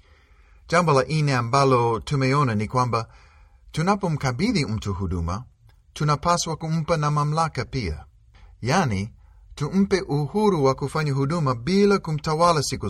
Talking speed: 105 wpm